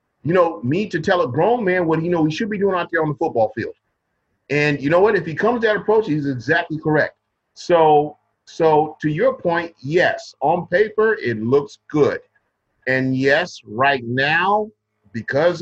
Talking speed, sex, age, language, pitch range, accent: 190 wpm, male, 40-59, English, 125-170 Hz, American